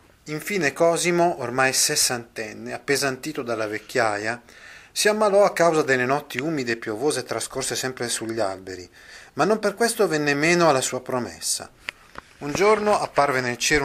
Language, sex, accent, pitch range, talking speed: Italian, male, native, 110-150 Hz, 145 wpm